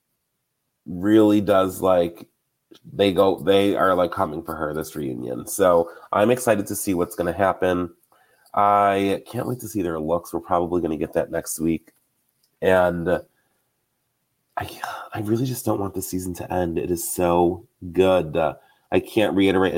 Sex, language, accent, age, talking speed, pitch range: male, English, American, 30-49, 165 wpm, 85-100 Hz